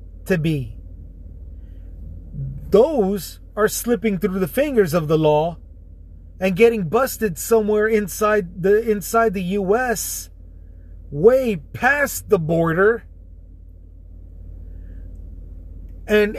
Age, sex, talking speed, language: 30-49, male, 90 wpm, English